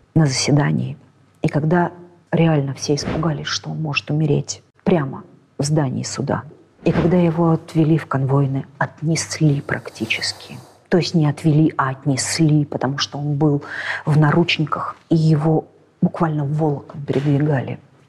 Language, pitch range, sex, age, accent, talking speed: Russian, 140-170 Hz, female, 40-59, native, 135 wpm